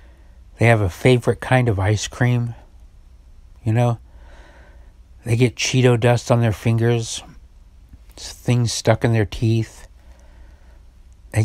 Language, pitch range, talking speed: English, 80-135 Hz, 120 wpm